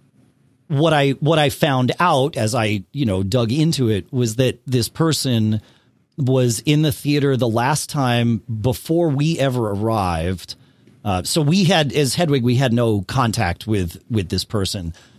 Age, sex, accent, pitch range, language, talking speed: 40-59, male, American, 115-160 Hz, English, 165 wpm